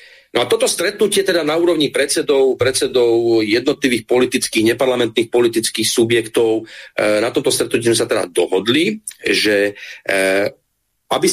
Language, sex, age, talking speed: Slovak, male, 40-59, 115 wpm